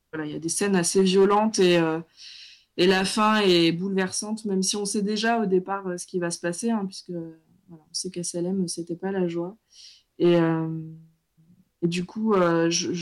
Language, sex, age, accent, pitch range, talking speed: French, female, 20-39, French, 170-195 Hz, 210 wpm